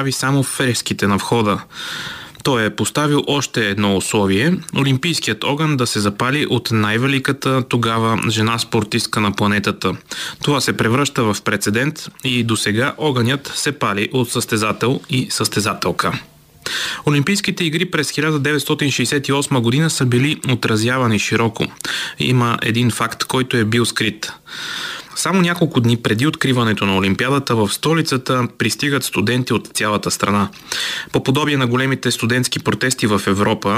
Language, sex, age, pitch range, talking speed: Bulgarian, male, 30-49, 115-140 Hz, 135 wpm